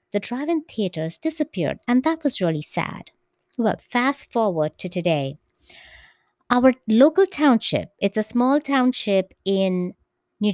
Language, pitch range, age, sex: English, 180-240 Hz, 30-49, female